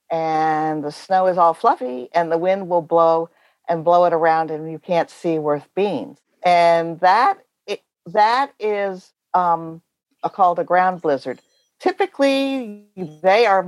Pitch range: 155-190 Hz